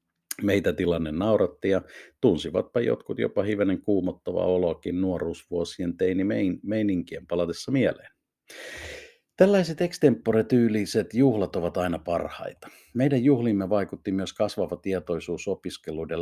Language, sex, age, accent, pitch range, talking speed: Finnish, male, 50-69, native, 85-110 Hz, 105 wpm